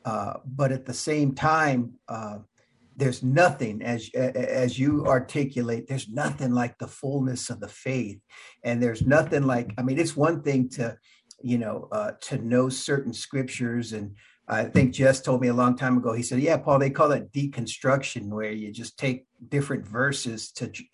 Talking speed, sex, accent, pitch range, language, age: 185 wpm, male, American, 125-145 Hz, English, 50-69